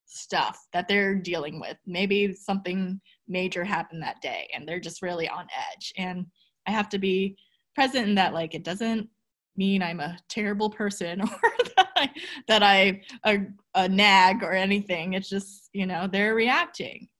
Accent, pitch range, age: American, 185-215 Hz, 20-39